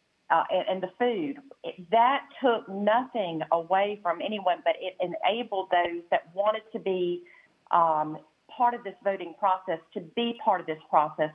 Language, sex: English, female